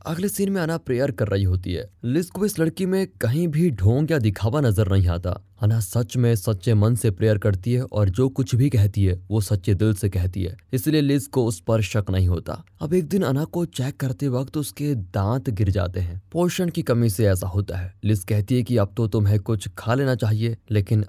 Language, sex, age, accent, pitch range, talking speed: Hindi, male, 20-39, native, 100-135 Hz, 235 wpm